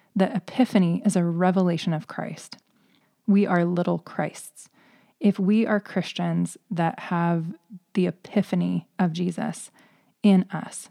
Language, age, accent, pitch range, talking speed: English, 20-39, American, 175-210 Hz, 125 wpm